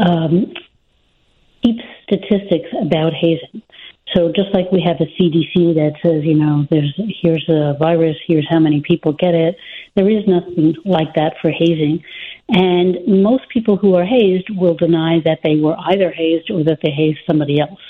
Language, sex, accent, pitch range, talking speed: English, female, American, 160-195 Hz, 175 wpm